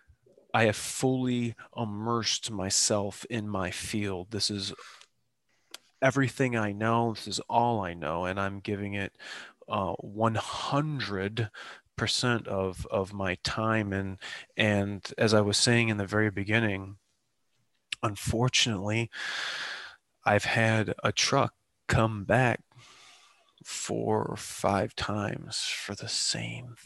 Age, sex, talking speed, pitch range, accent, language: 30-49, male, 115 wpm, 100-120 Hz, American, English